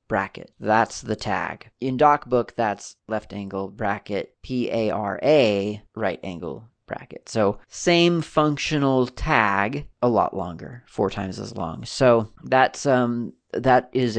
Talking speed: 140 wpm